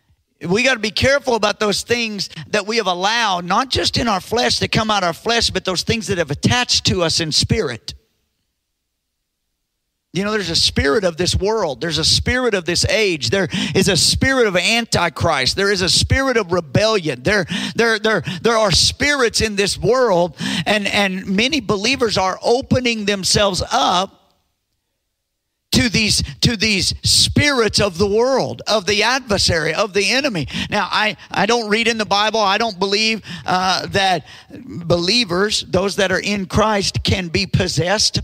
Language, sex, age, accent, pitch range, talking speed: English, male, 50-69, American, 180-230 Hz, 175 wpm